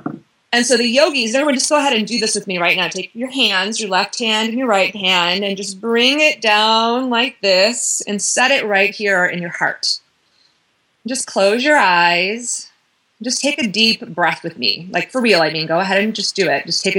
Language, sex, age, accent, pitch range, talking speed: English, female, 30-49, American, 180-220 Hz, 225 wpm